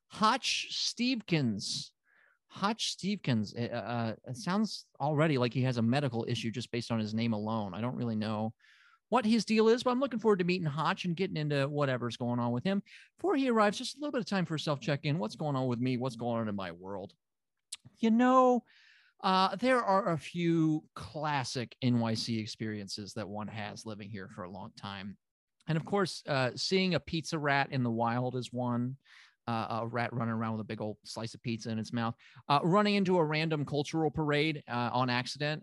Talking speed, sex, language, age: 210 wpm, male, English, 30-49